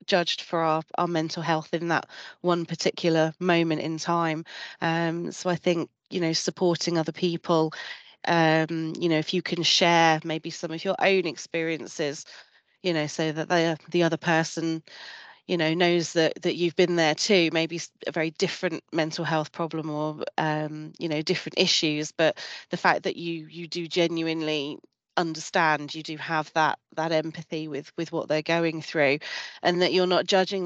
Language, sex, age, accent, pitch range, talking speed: English, female, 30-49, British, 160-175 Hz, 180 wpm